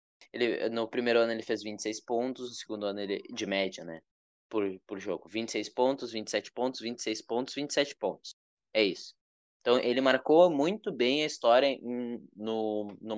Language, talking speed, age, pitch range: Portuguese, 175 wpm, 20-39, 110-145 Hz